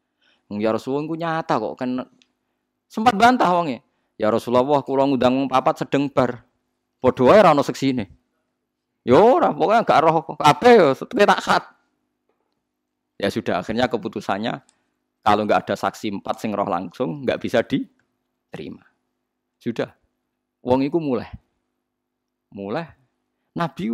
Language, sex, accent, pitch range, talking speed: Indonesian, male, native, 100-140 Hz, 130 wpm